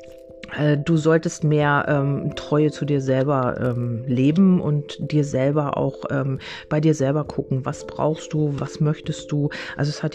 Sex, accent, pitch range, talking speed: female, German, 140-160 Hz, 165 wpm